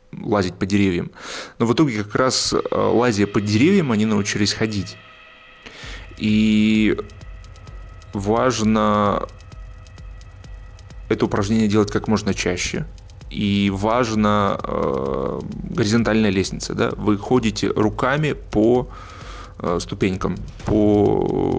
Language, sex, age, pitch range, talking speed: Russian, male, 20-39, 95-110 Hz, 90 wpm